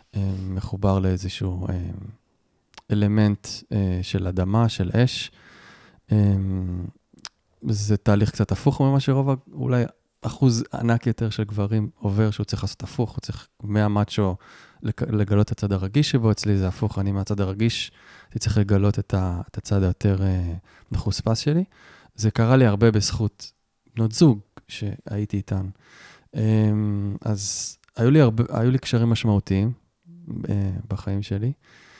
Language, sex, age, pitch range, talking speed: Hebrew, male, 20-39, 95-115 Hz, 135 wpm